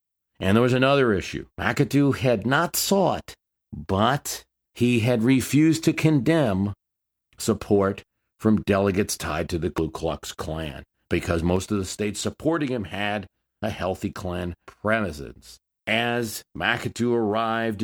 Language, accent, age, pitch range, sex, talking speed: English, American, 50-69, 95-120 Hz, male, 130 wpm